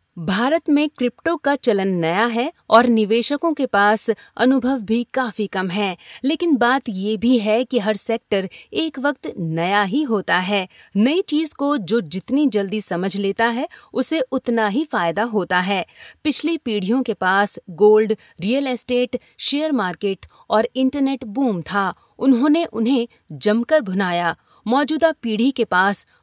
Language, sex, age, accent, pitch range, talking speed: Hindi, female, 30-49, native, 195-265 Hz, 150 wpm